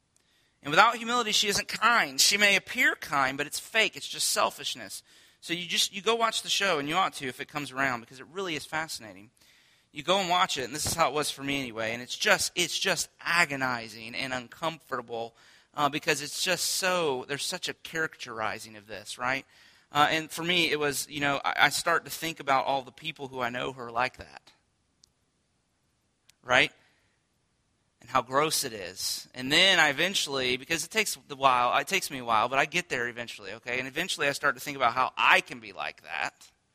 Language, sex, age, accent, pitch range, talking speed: English, male, 30-49, American, 125-175 Hz, 215 wpm